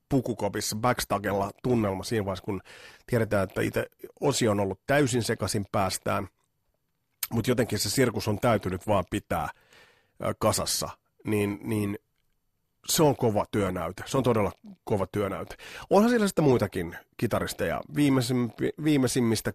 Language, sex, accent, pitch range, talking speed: Finnish, male, native, 105-145 Hz, 125 wpm